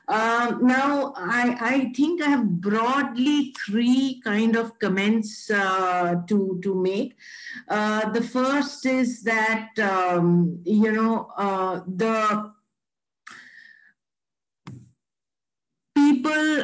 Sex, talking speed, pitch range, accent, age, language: female, 95 wpm, 210-255 Hz, Indian, 50-69, English